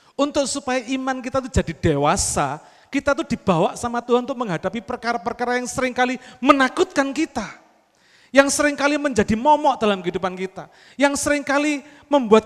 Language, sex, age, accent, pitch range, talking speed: Indonesian, male, 40-59, native, 185-265 Hz, 155 wpm